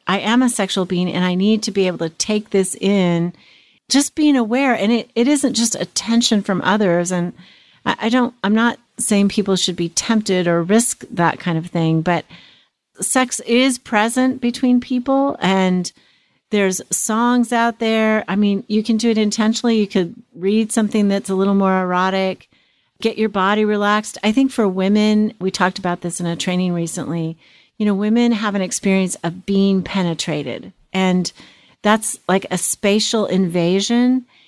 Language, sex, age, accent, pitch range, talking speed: English, female, 40-59, American, 180-220 Hz, 175 wpm